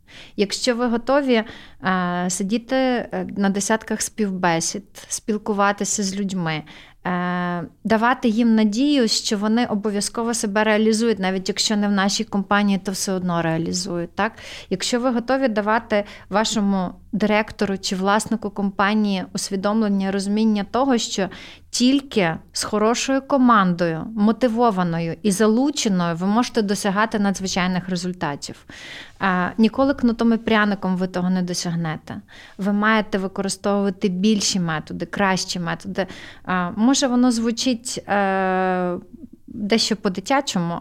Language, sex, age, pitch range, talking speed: Ukrainian, female, 30-49, 185-225 Hz, 110 wpm